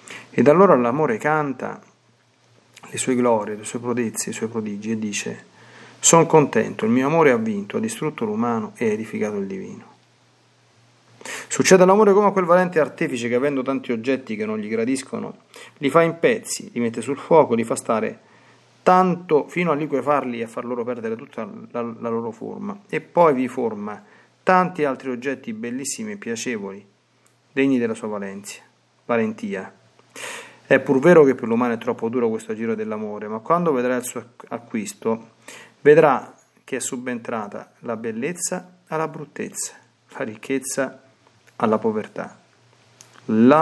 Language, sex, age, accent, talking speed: Italian, male, 40-59, native, 160 wpm